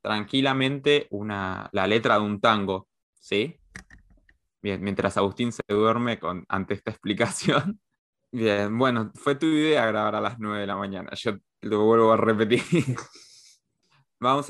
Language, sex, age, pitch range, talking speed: Spanish, male, 20-39, 105-135 Hz, 145 wpm